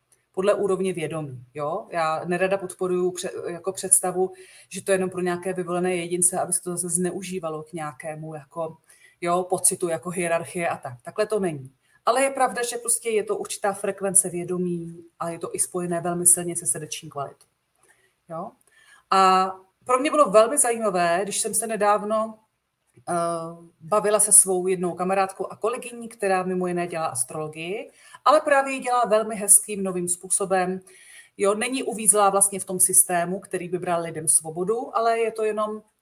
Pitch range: 175-215 Hz